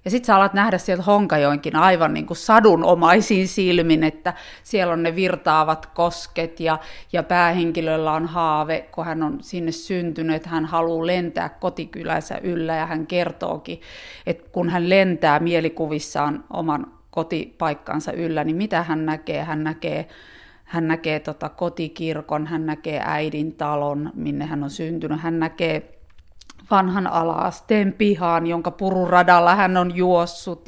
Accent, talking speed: native, 135 wpm